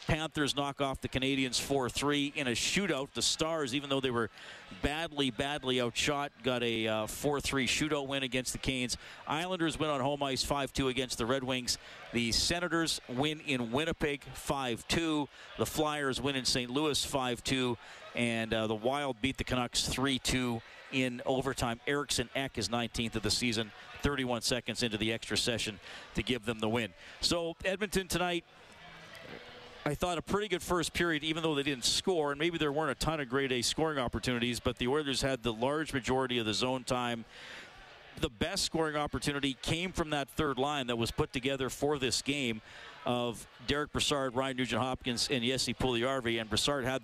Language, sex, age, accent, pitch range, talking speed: English, male, 50-69, American, 120-145 Hz, 180 wpm